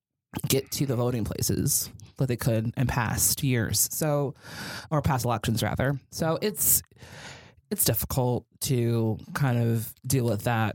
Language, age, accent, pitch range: English, 20-39, American, 115-135 Hz